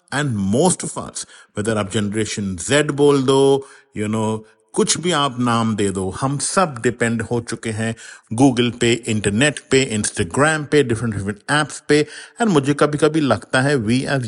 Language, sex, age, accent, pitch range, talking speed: English, male, 50-69, Indian, 110-145 Hz, 170 wpm